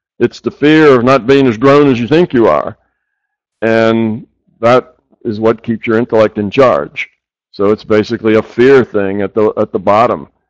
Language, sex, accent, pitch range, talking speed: English, male, American, 105-130 Hz, 190 wpm